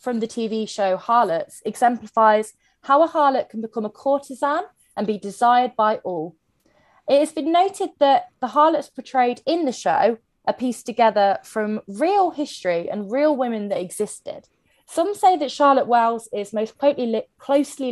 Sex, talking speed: female, 160 wpm